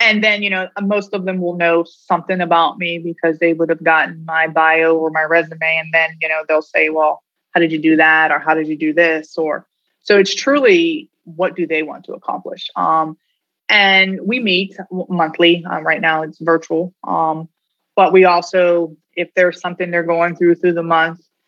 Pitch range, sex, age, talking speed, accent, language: 160-180 Hz, female, 20-39, 205 wpm, American, English